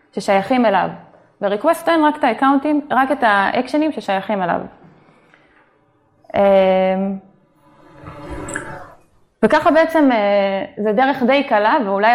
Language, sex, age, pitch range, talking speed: Hebrew, female, 20-39, 195-275 Hz, 80 wpm